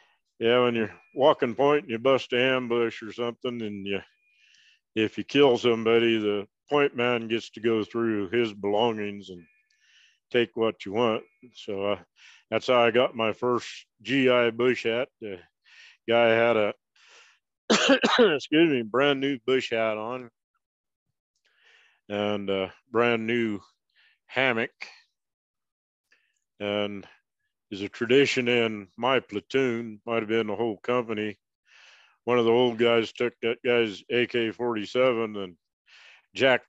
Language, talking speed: English, 135 wpm